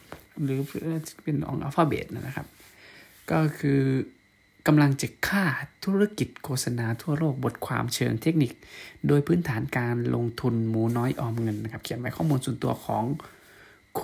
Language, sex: Thai, male